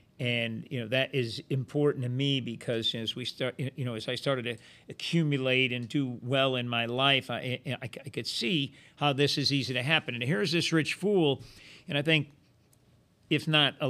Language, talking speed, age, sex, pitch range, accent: English, 205 wpm, 50-69, male, 125-155 Hz, American